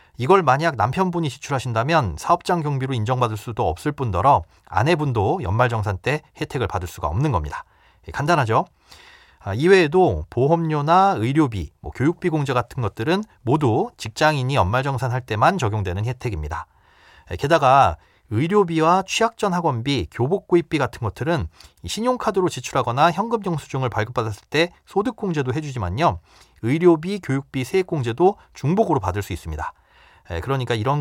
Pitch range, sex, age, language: 110-170 Hz, male, 30-49, Korean